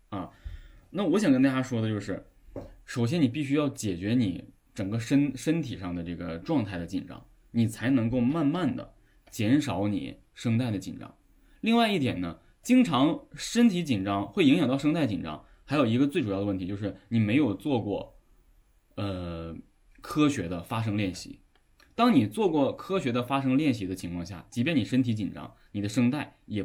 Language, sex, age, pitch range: Chinese, male, 20-39, 95-135 Hz